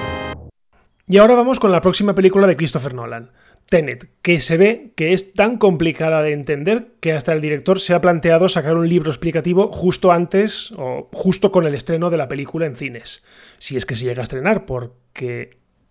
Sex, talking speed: male, 190 wpm